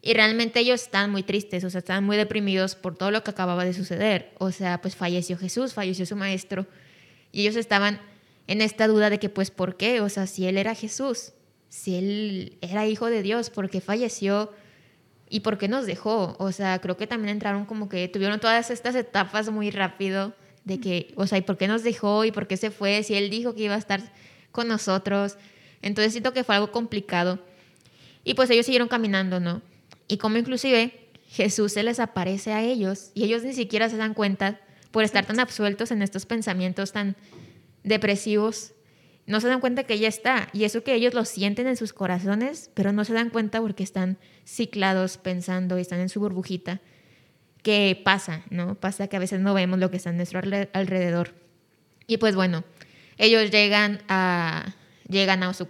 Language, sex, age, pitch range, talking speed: Spanish, female, 20-39, 185-220 Hz, 200 wpm